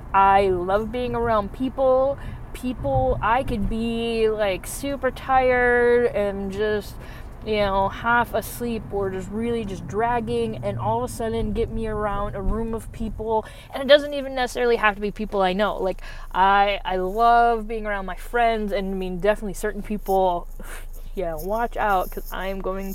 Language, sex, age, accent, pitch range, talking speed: English, female, 20-39, American, 190-220 Hz, 175 wpm